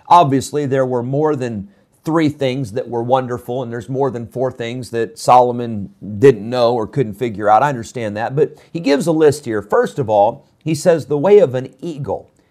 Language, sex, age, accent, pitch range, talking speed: English, male, 40-59, American, 120-155 Hz, 205 wpm